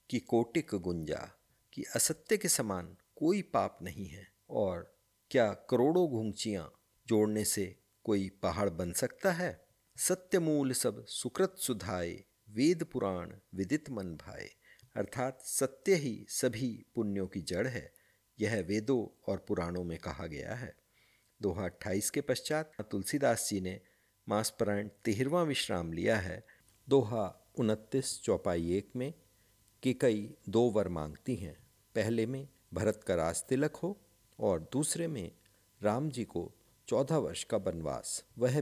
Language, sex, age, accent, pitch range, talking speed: Hindi, male, 50-69, native, 100-130 Hz, 135 wpm